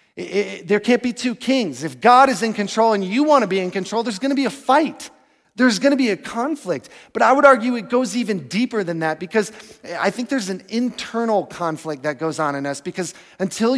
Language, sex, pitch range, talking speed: English, male, 170-250 Hz, 230 wpm